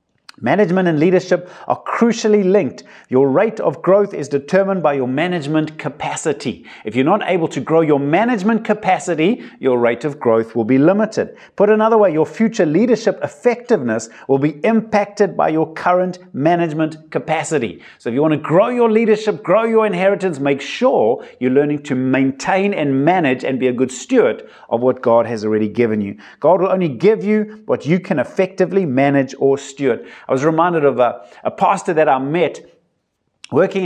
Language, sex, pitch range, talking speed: English, male, 140-210 Hz, 180 wpm